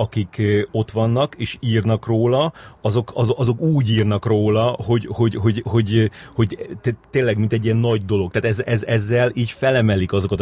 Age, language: 30-49, Hungarian